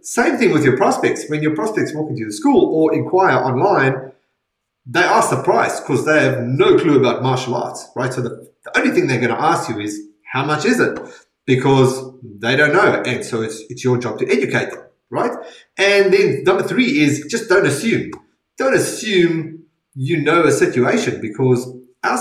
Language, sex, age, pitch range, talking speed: English, male, 30-49, 125-165 Hz, 195 wpm